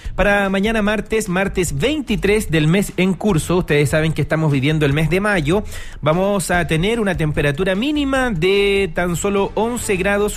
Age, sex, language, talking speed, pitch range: 40-59, male, Spanish, 170 wpm, 155-195 Hz